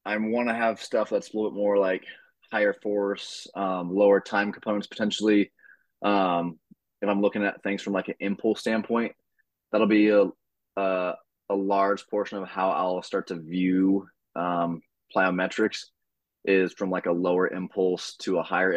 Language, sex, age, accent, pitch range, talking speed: English, male, 20-39, American, 90-105 Hz, 170 wpm